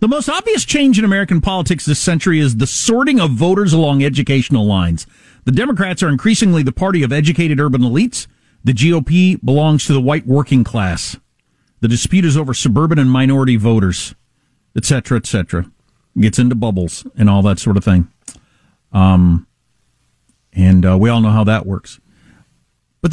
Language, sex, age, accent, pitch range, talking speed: English, male, 50-69, American, 120-190 Hz, 165 wpm